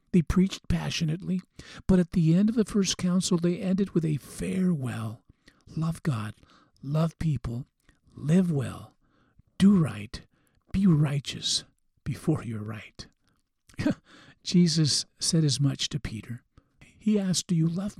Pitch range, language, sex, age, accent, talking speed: 135-180 Hz, English, male, 50-69, American, 135 wpm